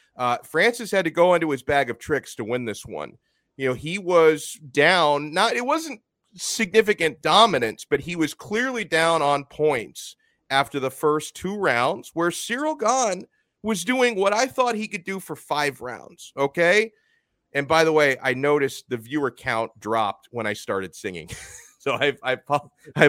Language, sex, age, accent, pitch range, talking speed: English, male, 40-59, American, 130-190 Hz, 180 wpm